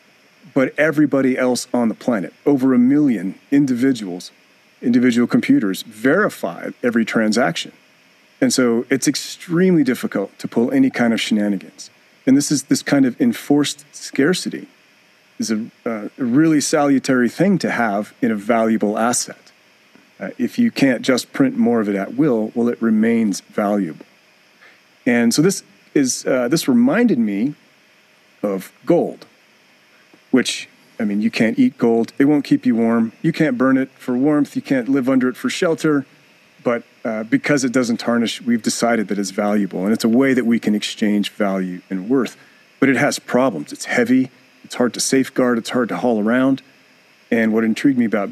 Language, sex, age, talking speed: English, male, 40-59, 170 wpm